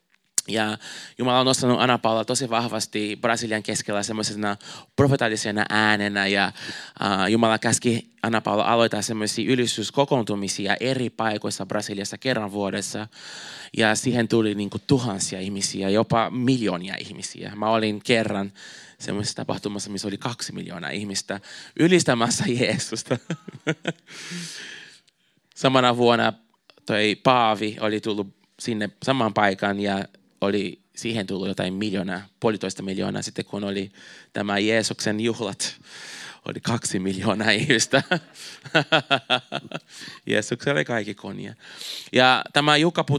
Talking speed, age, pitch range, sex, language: 110 wpm, 20-39, 100-125 Hz, male, Finnish